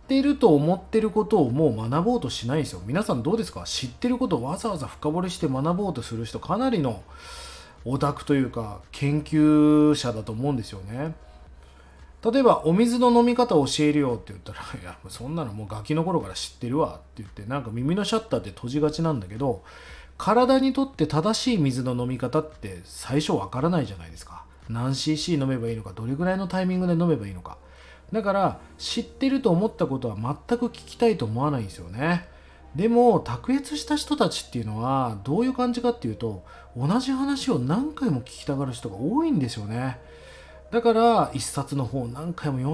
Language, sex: Japanese, male